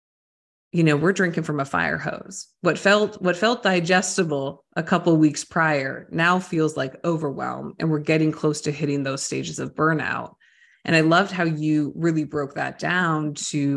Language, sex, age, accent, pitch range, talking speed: English, female, 20-39, American, 150-185 Hz, 185 wpm